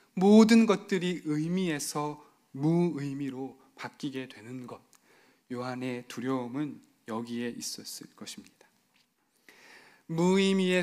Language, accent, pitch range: Korean, native, 140-190 Hz